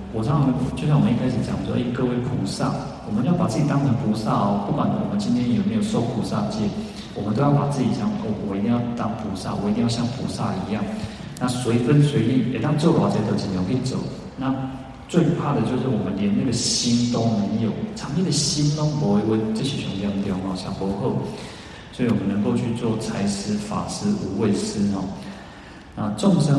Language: Chinese